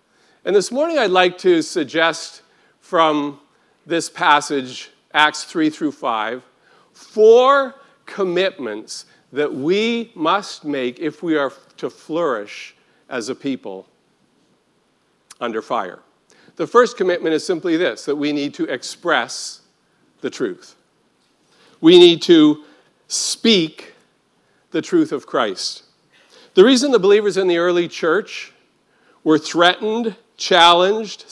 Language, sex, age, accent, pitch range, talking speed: English, male, 50-69, American, 155-235 Hz, 120 wpm